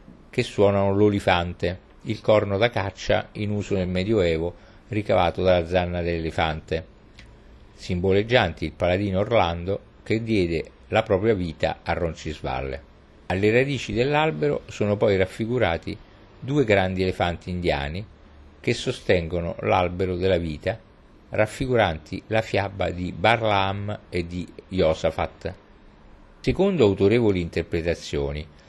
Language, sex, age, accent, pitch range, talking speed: Italian, male, 50-69, native, 85-110 Hz, 110 wpm